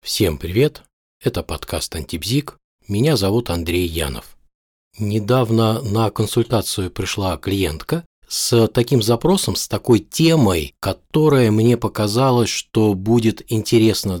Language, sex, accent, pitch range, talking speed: Russian, male, native, 90-125 Hz, 110 wpm